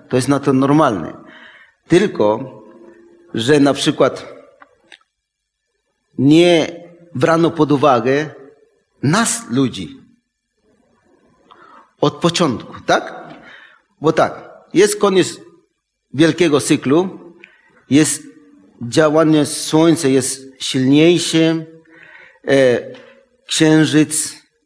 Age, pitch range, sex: 50-69, 130-160 Hz, male